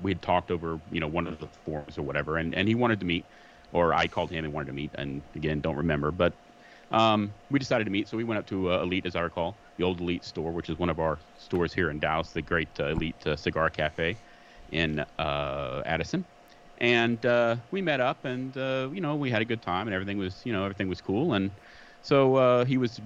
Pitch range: 80-110 Hz